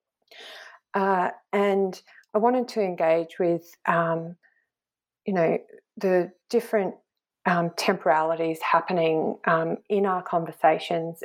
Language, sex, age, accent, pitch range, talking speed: English, female, 40-59, Australian, 175-230 Hz, 100 wpm